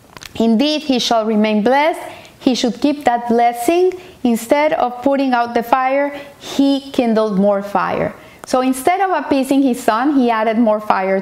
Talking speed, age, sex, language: 160 wpm, 40-59, female, English